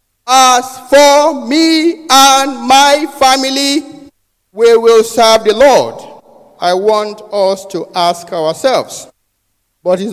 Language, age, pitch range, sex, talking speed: English, 50-69, 165-235 Hz, male, 115 wpm